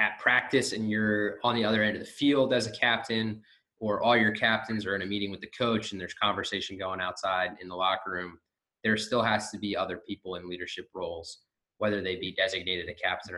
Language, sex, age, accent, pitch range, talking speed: English, male, 20-39, American, 95-110 Hz, 225 wpm